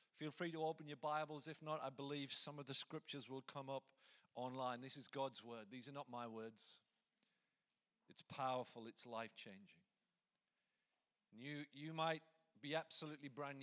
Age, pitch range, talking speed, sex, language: 40-59, 125-155 Hz, 165 wpm, male, English